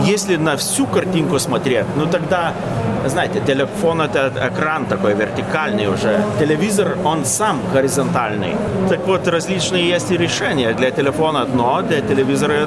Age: 30-49